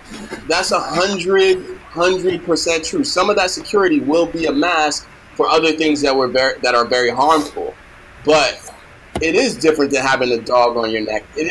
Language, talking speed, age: English, 190 wpm, 20-39